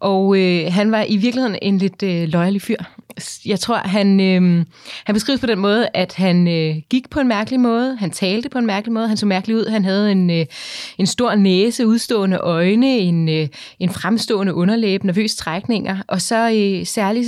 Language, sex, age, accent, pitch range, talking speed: Danish, female, 30-49, native, 180-220 Hz, 200 wpm